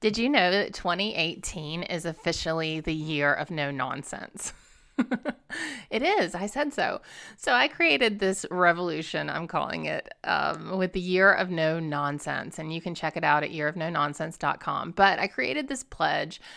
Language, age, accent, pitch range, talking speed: English, 30-49, American, 160-215 Hz, 165 wpm